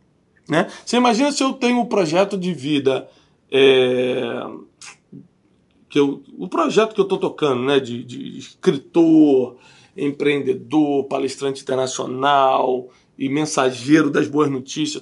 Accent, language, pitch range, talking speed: Brazilian, Portuguese, 140-210 Hz, 125 wpm